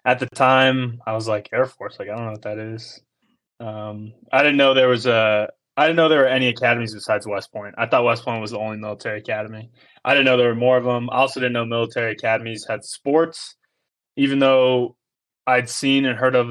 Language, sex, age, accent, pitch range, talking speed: English, male, 20-39, American, 110-130 Hz, 235 wpm